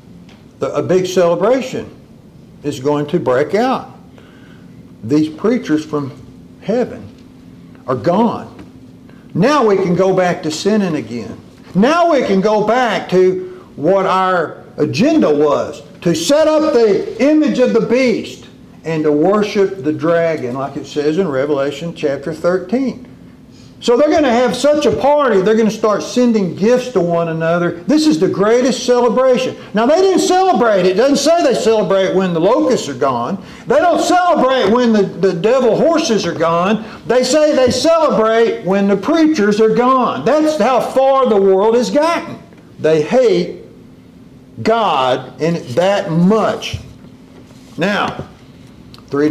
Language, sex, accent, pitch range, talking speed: English, male, American, 170-250 Hz, 150 wpm